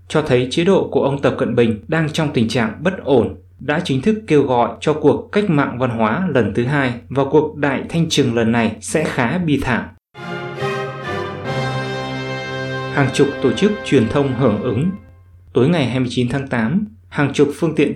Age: 20-39